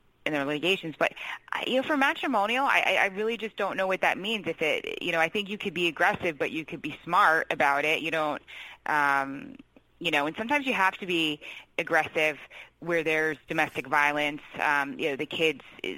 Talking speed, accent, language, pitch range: 205 wpm, American, English, 145-180 Hz